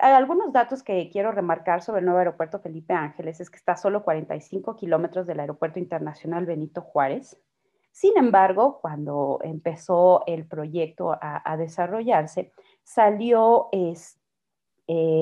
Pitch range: 170-210 Hz